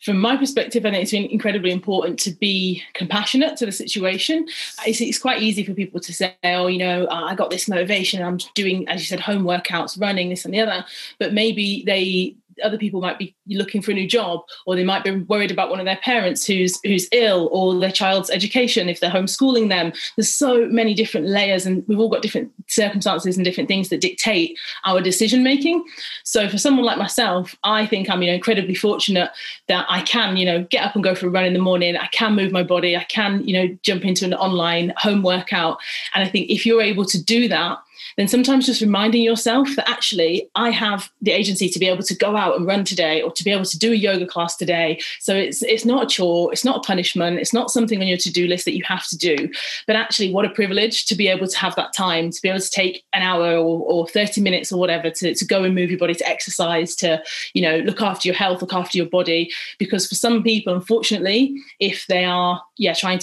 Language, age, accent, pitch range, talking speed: English, 30-49, British, 180-220 Hz, 240 wpm